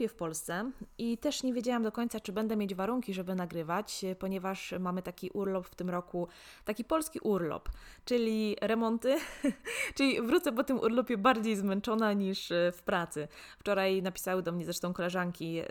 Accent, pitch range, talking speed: native, 180-230 Hz, 160 wpm